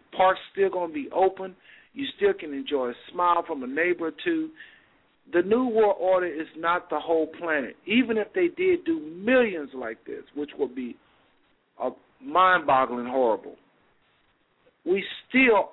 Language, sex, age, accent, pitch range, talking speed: English, male, 50-69, American, 170-235 Hz, 160 wpm